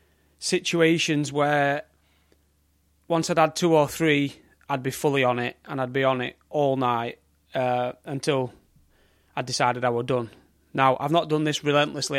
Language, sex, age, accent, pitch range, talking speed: English, male, 30-49, British, 120-145 Hz, 160 wpm